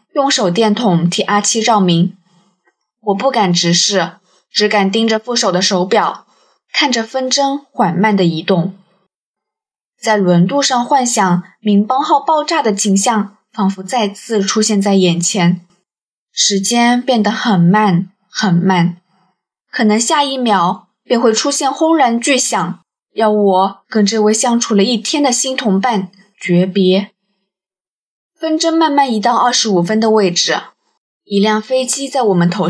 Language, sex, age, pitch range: Chinese, female, 20-39, 190-245 Hz